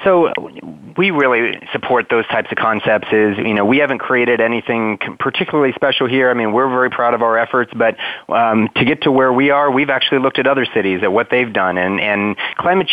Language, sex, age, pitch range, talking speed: English, male, 30-49, 105-130 Hz, 220 wpm